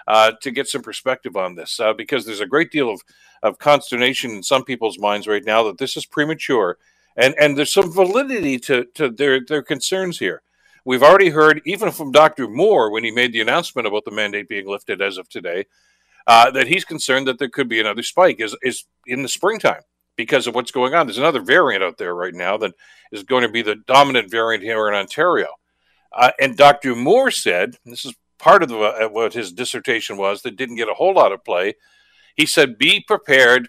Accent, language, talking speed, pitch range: American, English, 215 wpm, 110-155 Hz